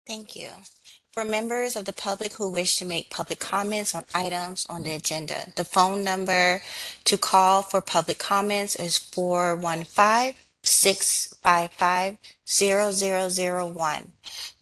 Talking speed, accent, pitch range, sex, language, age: 115 wpm, American, 175-205 Hz, female, English, 30-49